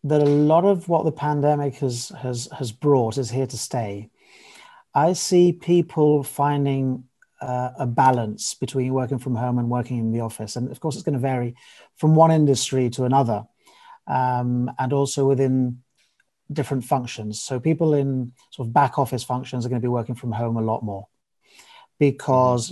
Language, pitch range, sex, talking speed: English, 120-145 Hz, male, 180 wpm